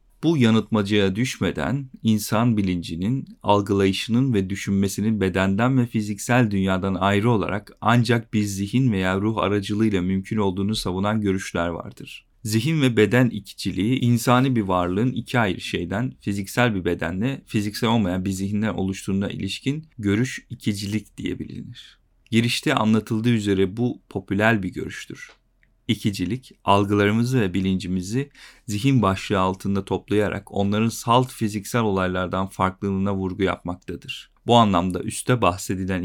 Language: Turkish